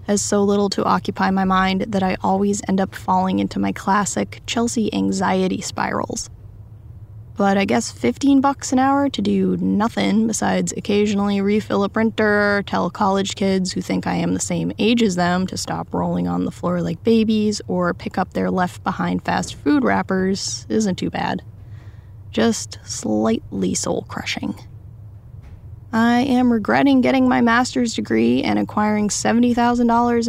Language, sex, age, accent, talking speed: English, female, 10-29, American, 155 wpm